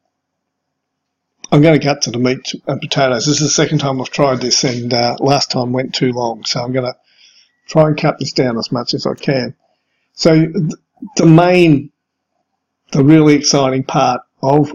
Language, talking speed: English, 185 wpm